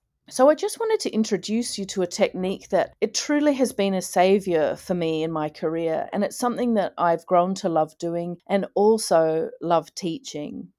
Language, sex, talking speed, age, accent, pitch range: English, female, 195 wpm, 40-59, Australian, 165-205 Hz